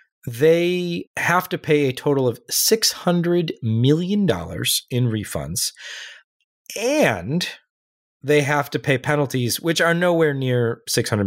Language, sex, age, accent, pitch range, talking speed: English, male, 30-49, American, 115-160 Hz, 120 wpm